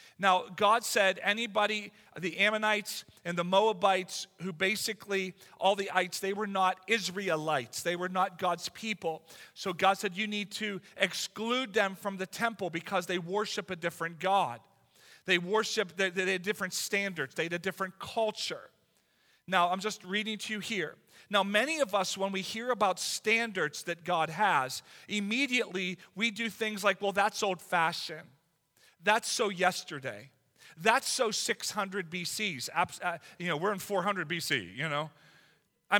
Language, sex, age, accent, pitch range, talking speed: English, male, 40-59, American, 180-215 Hz, 160 wpm